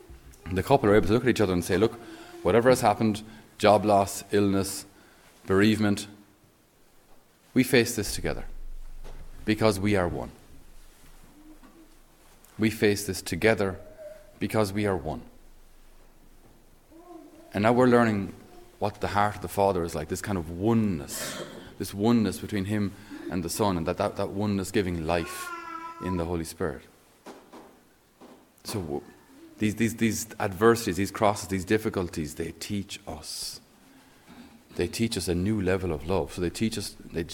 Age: 30-49